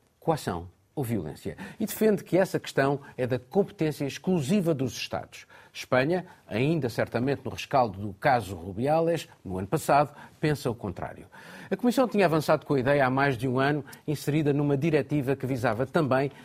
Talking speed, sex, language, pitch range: 170 wpm, male, Portuguese, 120-160 Hz